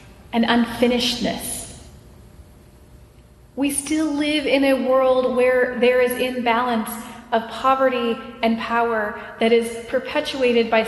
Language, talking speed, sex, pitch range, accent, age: English, 105 wpm, female, 215-260 Hz, American, 30-49